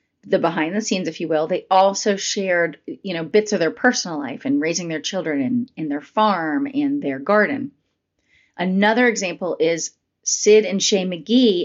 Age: 30-49